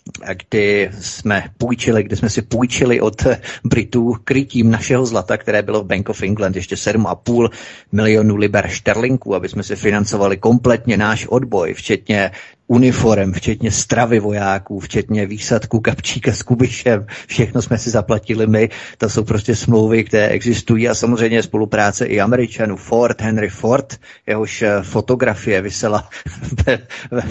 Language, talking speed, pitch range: Czech, 140 wpm, 100-120 Hz